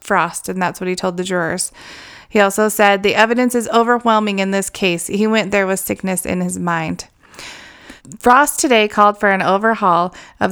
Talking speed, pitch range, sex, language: 190 wpm, 185-225 Hz, female, English